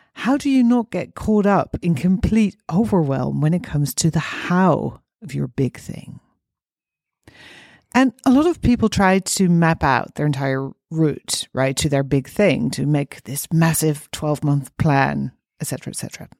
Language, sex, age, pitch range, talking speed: English, female, 40-59, 145-195 Hz, 175 wpm